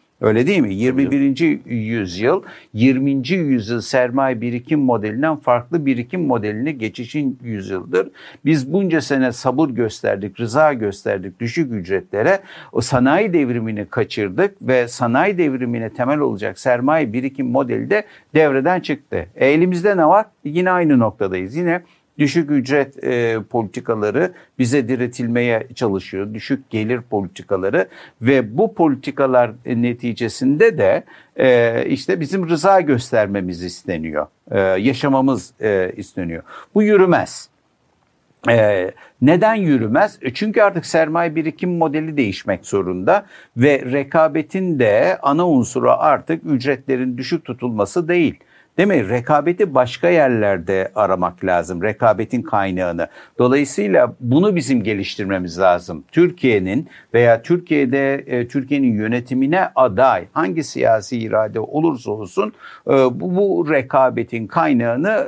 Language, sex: Turkish, male